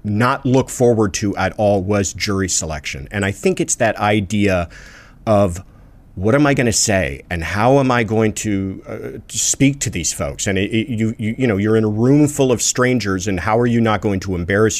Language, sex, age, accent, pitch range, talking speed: English, male, 40-59, American, 100-130 Hz, 195 wpm